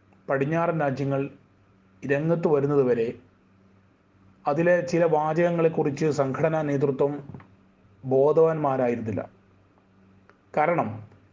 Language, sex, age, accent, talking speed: Malayalam, male, 30-49, native, 60 wpm